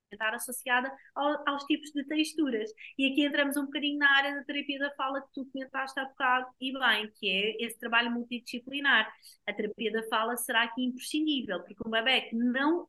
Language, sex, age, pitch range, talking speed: Portuguese, female, 20-39, 235-280 Hz, 190 wpm